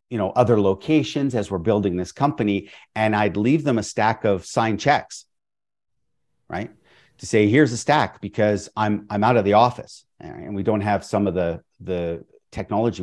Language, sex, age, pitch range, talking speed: English, male, 50-69, 100-120 Hz, 185 wpm